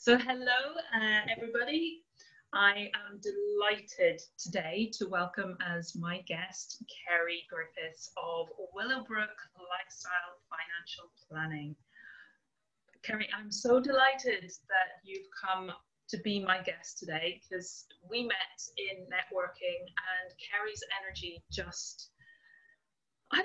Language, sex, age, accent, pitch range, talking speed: English, female, 30-49, British, 180-255 Hz, 105 wpm